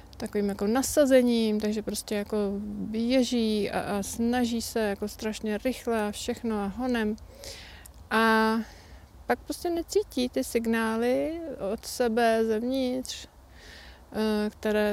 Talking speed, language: 115 wpm, Czech